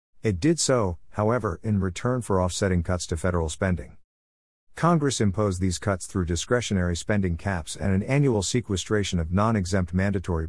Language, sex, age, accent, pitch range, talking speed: English, male, 50-69, American, 85-110 Hz, 155 wpm